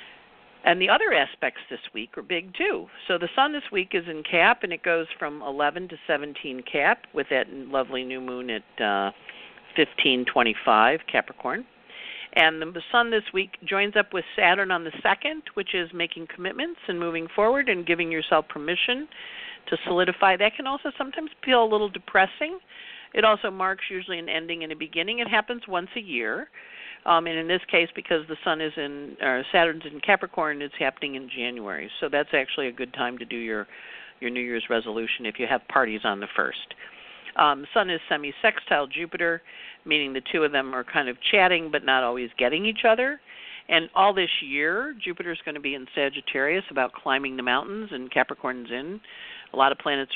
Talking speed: 195 wpm